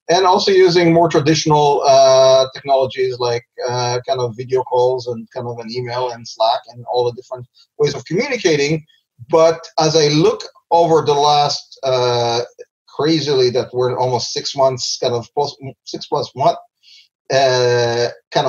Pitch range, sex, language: 125-160 Hz, male, English